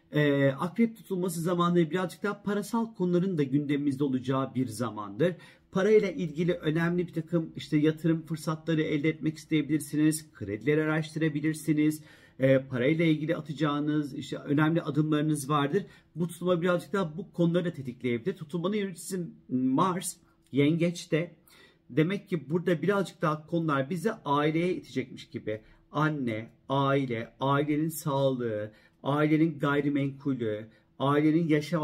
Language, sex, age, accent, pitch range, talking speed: Turkish, male, 50-69, native, 140-175 Hz, 120 wpm